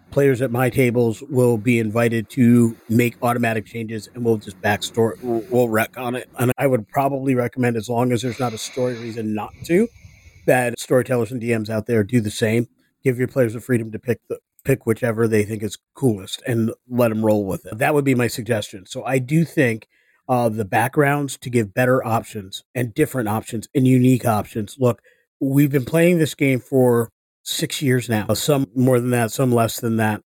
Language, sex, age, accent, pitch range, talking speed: English, male, 40-59, American, 110-130 Hz, 205 wpm